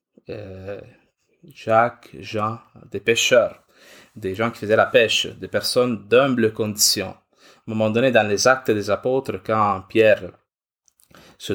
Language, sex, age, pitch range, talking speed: French, male, 20-39, 100-130 Hz, 135 wpm